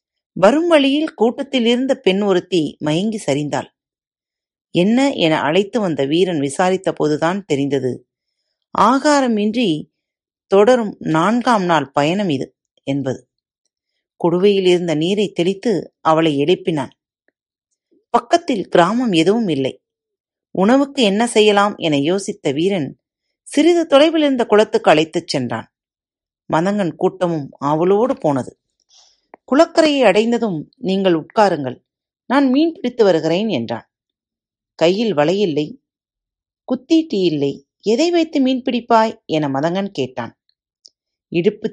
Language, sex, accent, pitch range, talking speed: Tamil, female, native, 155-240 Hz, 100 wpm